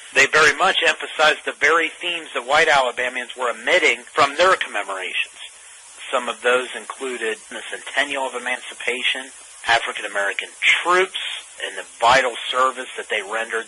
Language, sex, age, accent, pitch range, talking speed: English, male, 40-59, American, 115-145 Hz, 140 wpm